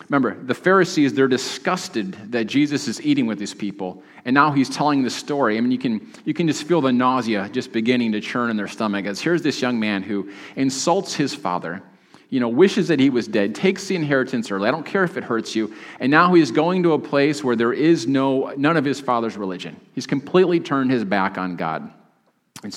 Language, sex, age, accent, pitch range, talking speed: English, male, 40-59, American, 110-140 Hz, 225 wpm